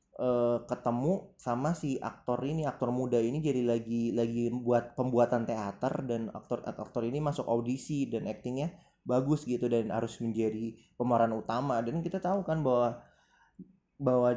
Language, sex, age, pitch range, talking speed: Indonesian, male, 20-39, 120-155 Hz, 140 wpm